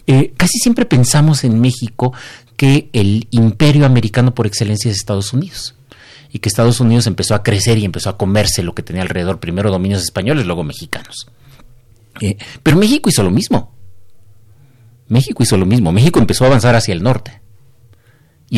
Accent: Mexican